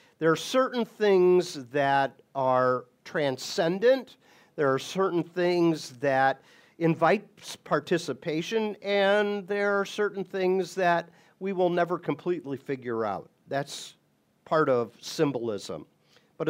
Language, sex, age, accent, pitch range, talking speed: English, male, 50-69, American, 145-200 Hz, 115 wpm